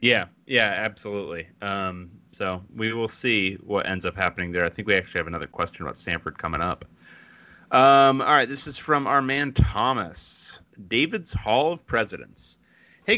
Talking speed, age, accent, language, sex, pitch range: 175 wpm, 30-49, American, English, male, 100-145 Hz